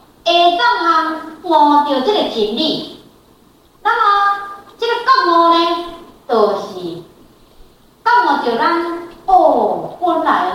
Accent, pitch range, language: American, 250-365 Hz, Chinese